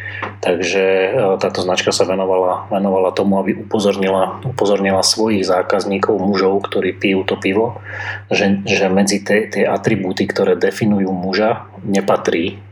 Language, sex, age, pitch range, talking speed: Slovak, male, 30-49, 95-110 Hz, 125 wpm